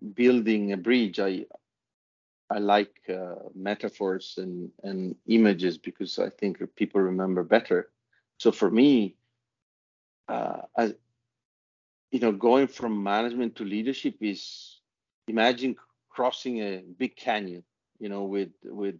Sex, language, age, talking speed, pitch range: male, English, 40-59, 120 wpm, 95-115 Hz